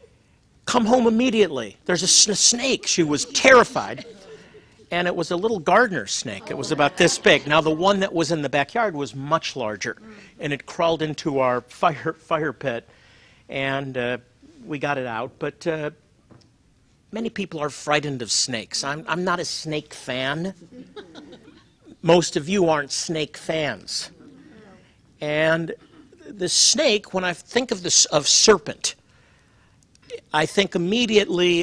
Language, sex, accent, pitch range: English, male, American, 150-200 Hz